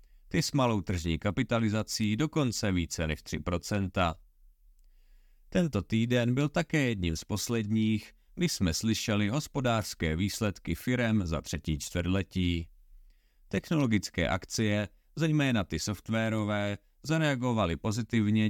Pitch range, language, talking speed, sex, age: 85-115 Hz, Czech, 105 wpm, male, 40-59